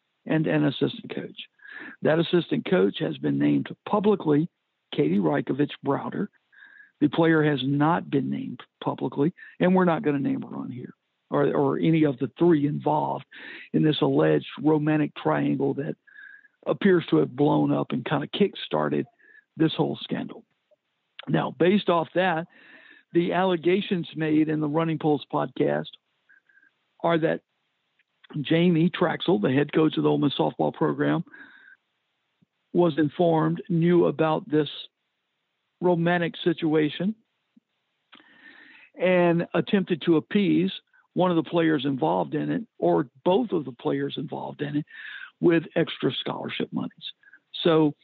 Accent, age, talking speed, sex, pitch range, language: American, 60-79, 140 wpm, male, 150-190 Hz, English